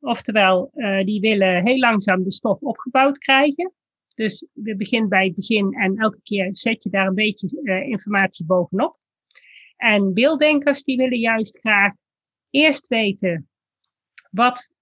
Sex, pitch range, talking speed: female, 205-270 Hz, 145 wpm